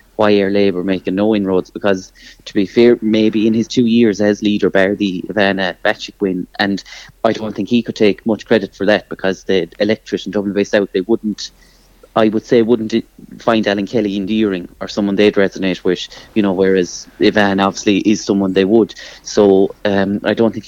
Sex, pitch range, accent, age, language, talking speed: male, 95-110 Hz, Irish, 30-49, English, 200 wpm